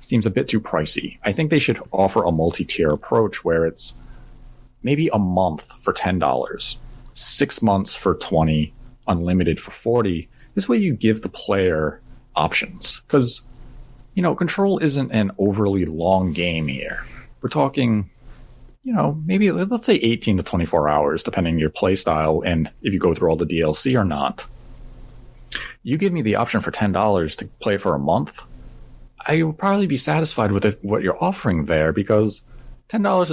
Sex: male